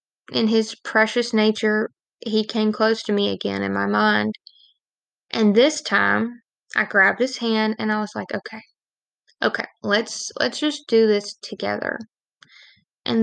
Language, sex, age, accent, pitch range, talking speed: English, female, 10-29, American, 210-240 Hz, 150 wpm